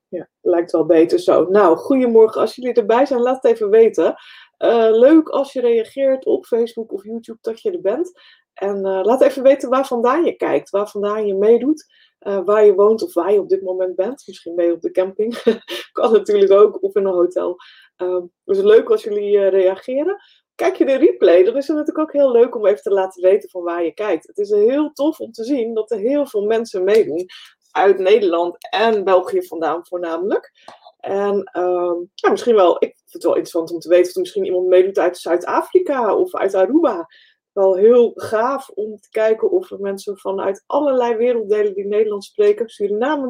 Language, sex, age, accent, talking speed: Dutch, female, 20-39, Dutch, 205 wpm